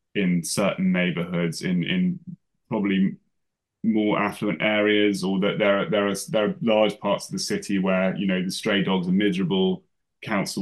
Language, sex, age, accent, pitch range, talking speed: English, male, 20-39, British, 100-130 Hz, 175 wpm